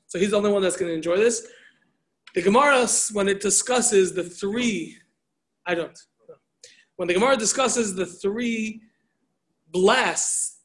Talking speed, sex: 145 wpm, male